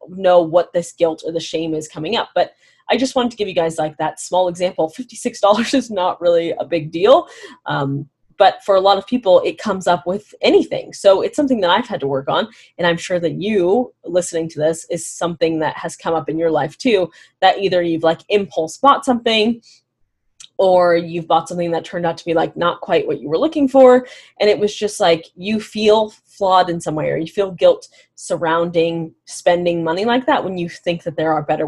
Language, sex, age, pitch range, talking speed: English, female, 20-39, 165-215 Hz, 225 wpm